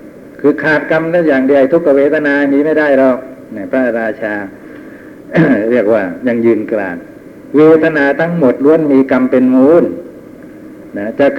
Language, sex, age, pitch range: Thai, male, 60-79, 125-165 Hz